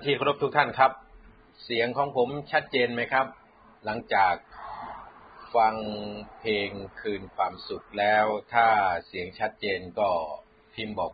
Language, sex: Thai, male